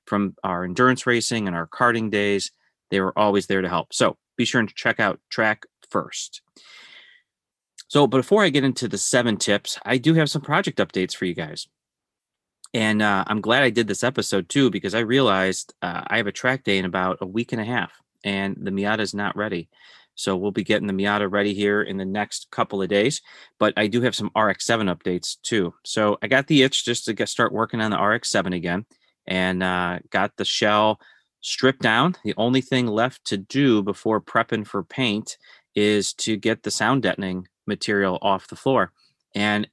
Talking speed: 200 wpm